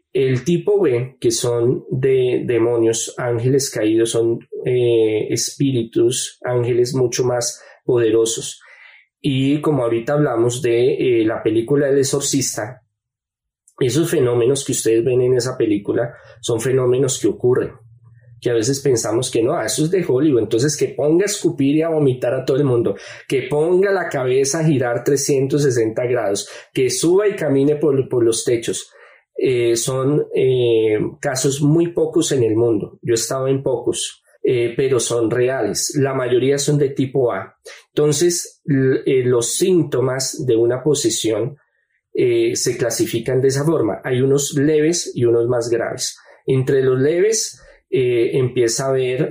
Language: Spanish